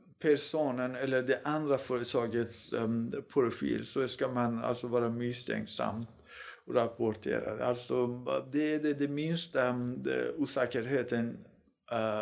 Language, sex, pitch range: Swedish, male, 115-135 Hz